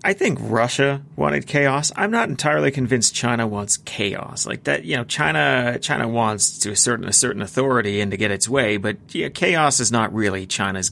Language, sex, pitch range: English, male, 105-135 Hz